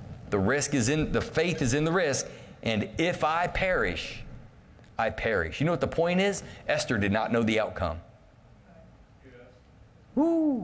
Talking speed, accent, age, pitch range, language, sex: 165 wpm, American, 40-59, 115-155 Hz, English, male